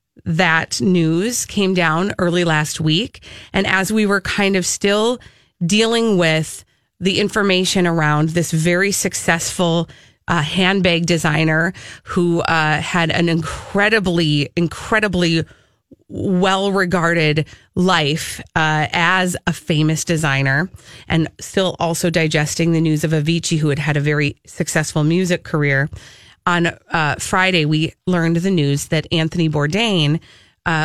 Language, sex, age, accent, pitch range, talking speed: English, female, 30-49, American, 155-185 Hz, 125 wpm